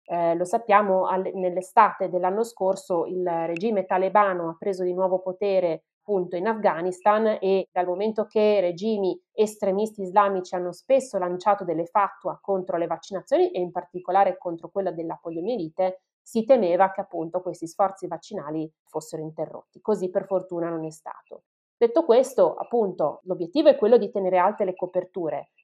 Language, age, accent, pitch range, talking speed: Italian, 30-49, native, 180-215 Hz, 155 wpm